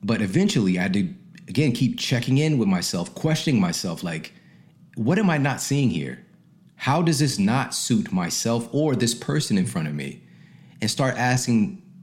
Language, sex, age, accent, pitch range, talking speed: English, male, 40-59, American, 120-185 Hz, 180 wpm